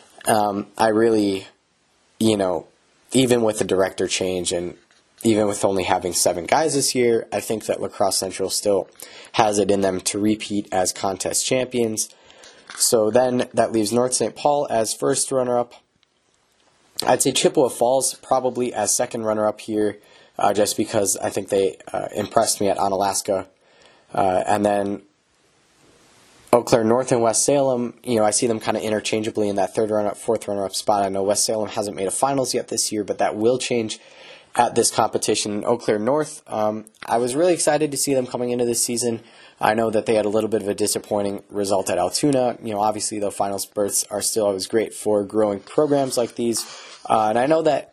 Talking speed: 200 wpm